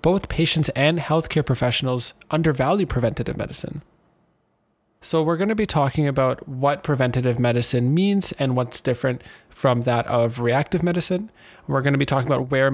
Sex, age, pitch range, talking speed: male, 20-39, 125-155 Hz, 160 wpm